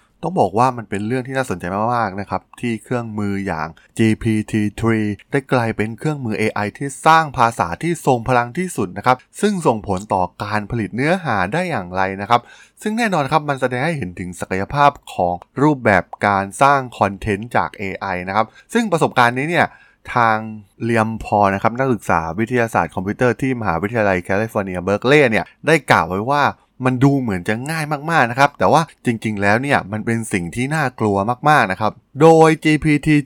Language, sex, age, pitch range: Thai, male, 20-39, 100-135 Hz